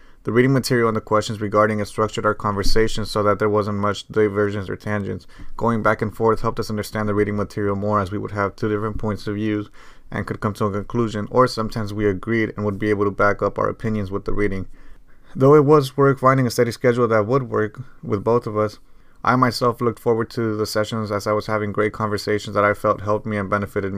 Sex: male